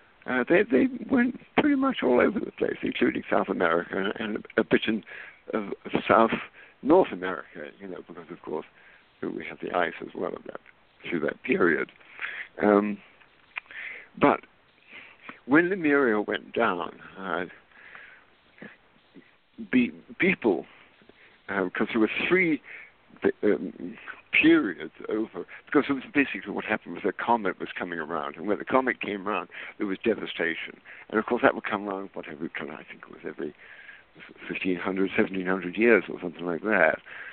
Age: 60-79